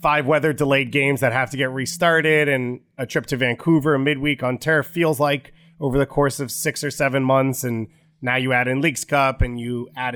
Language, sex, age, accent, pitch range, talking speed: English, male, 30-49, American, 120-145 Hz, 220 wpm